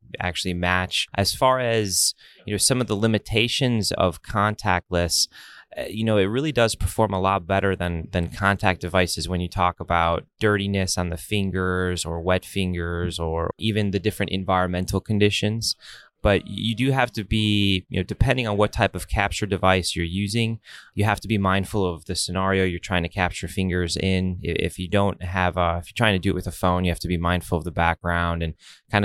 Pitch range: 85-105 Hz